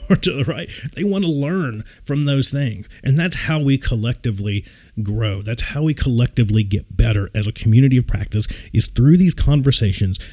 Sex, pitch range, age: male, 110-155 Hz, 40-59